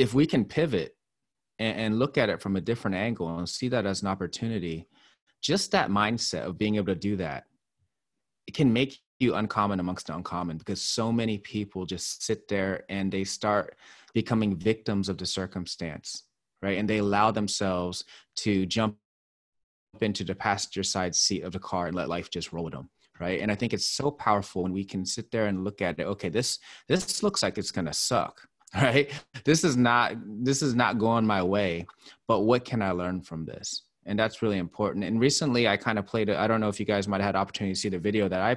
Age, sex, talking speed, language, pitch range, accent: 30-49, male, 220 wpm, English, 90-110 Hz, American